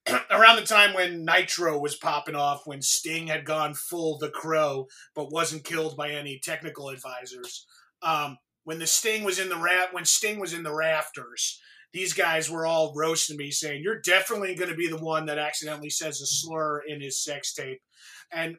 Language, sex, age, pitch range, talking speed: English, male, 30-49, 145-180 Hz, 195 wpm